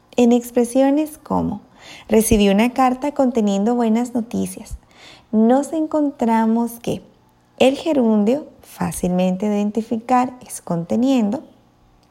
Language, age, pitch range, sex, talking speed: Spanish, 20-39, 195-245 Hz, female, 95 wpm